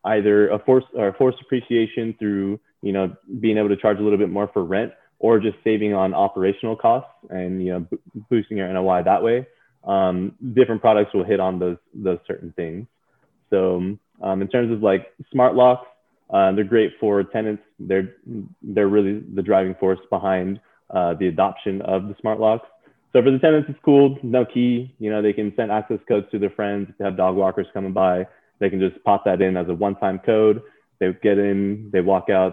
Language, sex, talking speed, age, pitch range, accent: English, male, 205 wpm, 20-39, 95-110 Hz, American